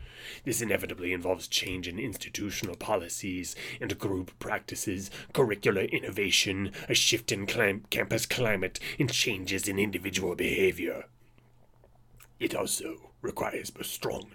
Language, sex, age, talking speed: English, male, 30-49, 115 wpm